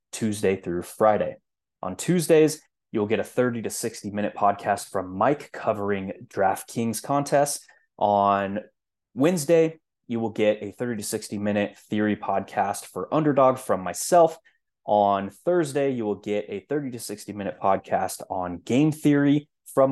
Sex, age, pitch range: male, 20-39, 100-125 Hz